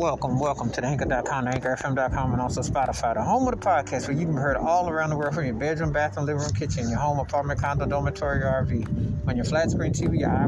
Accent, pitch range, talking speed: American, 125-155 Hz, 235 wpm